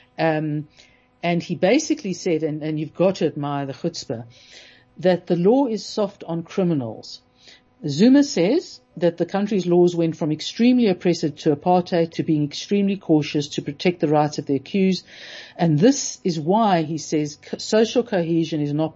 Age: 50-69